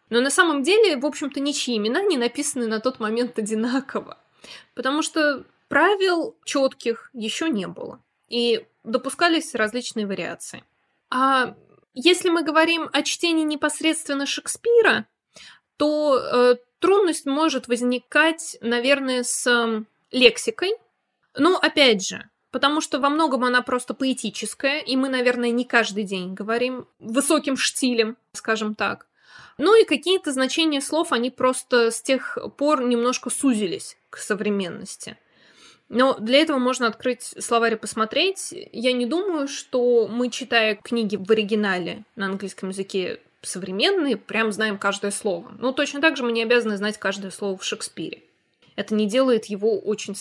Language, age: Russian, 20-39